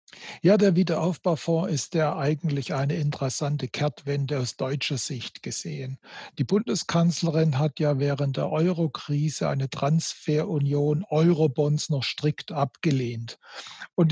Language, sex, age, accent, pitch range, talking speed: German, male, 60-79, German, 145-180 Hz, 115 wpm